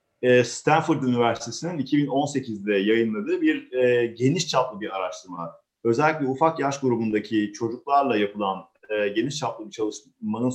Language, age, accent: Turkish, 40-59, native